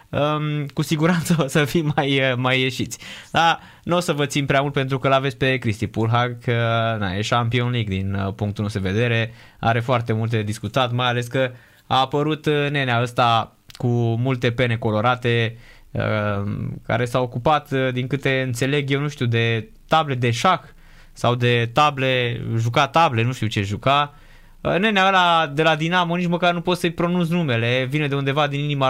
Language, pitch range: Romanian, 120-165 Hz